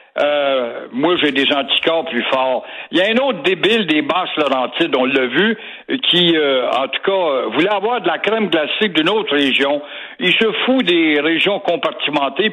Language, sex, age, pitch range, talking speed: French, male, 60-79, 150-220 Hz, 185 wpm